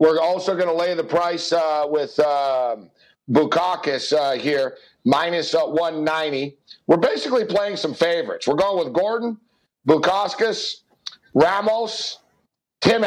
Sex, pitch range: male, 150-205 Hz